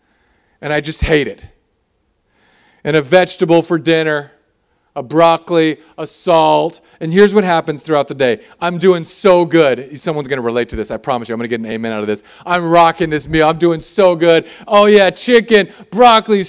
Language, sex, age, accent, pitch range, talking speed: English, male, 40-59, American, 165-230 Hz, 200 wpm